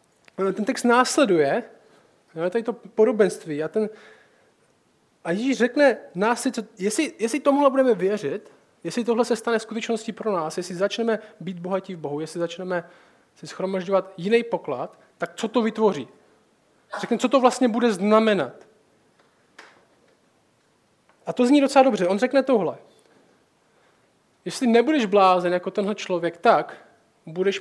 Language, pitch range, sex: Czech, 175-235 Hz, male